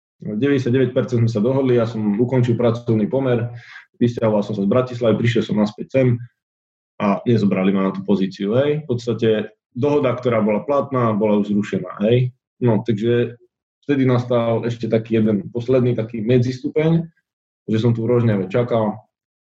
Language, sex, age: Slovak, male, 20-39